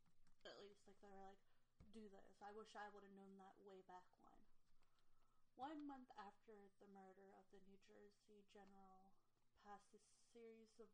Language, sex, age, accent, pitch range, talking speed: English, female, 30-49, American, 185-220 Hz, 175 wpm